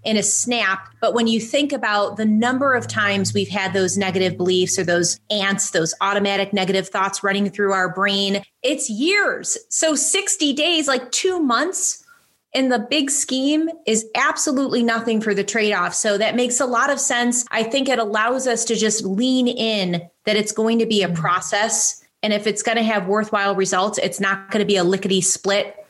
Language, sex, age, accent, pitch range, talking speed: English, female, 30-49, American, 200-255 Hz, 195 wpm